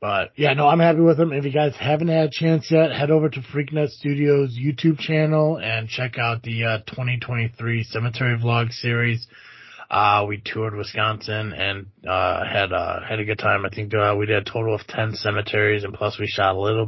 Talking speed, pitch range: 215 wpm, 105-125 Hz